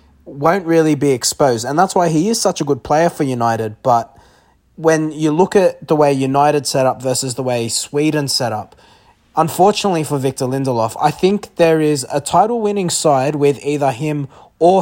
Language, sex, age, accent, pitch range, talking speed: English, male, 20-39, Australian, 120-155 Hz, 190 wpm